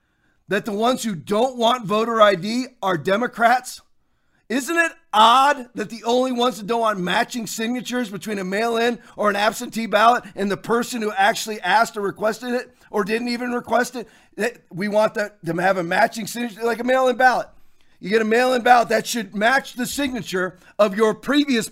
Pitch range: 205-265 Hz